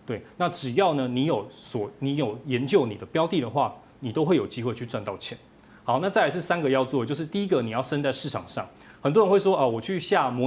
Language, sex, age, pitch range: Chinese, male, 20-39, 110-145 Hz